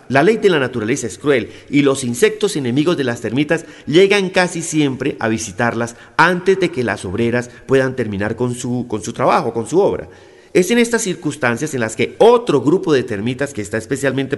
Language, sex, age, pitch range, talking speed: Spanish, male, 40-59, 120-165 Hz, 195 wpm